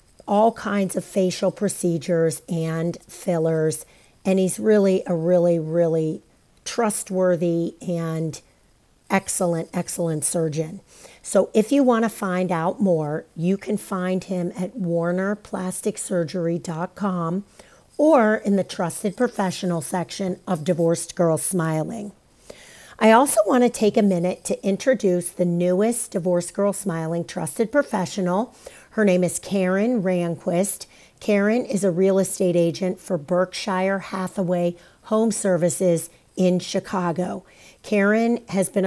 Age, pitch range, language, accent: 40-59, 175-200 Hz, English, American